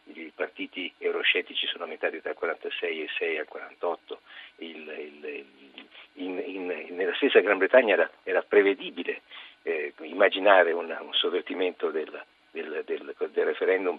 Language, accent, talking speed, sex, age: Italian, native, 135 wpm, male, 50-69